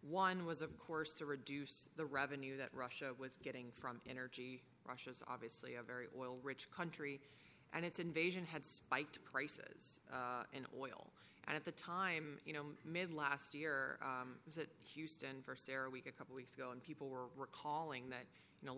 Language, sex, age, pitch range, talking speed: English, female, 20-39, 130-155 Hz, 180 wpm